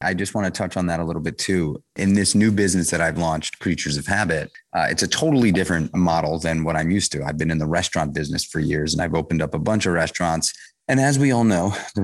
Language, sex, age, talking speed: English, male, 30-49, 270 wpm